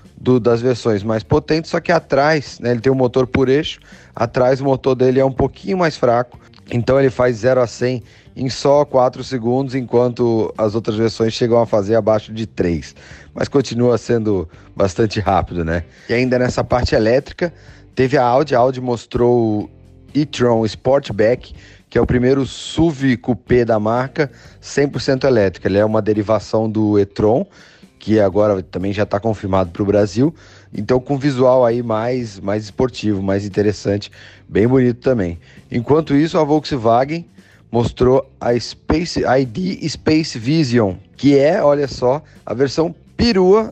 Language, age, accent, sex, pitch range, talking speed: Portuguese, 30-49, Brazilian, male, 105-130 Hz, 160 wpm